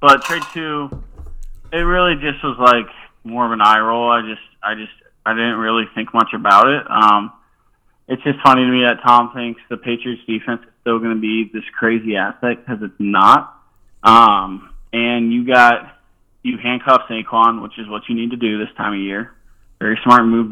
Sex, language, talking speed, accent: male, English, 200 wpm, American